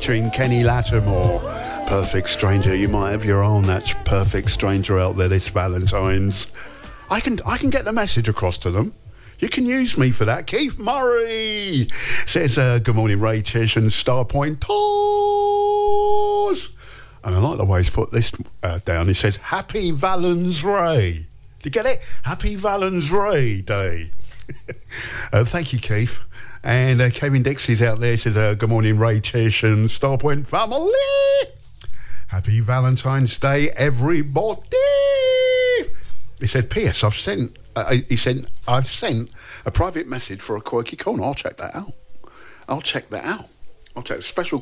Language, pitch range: English, 105-145 Hz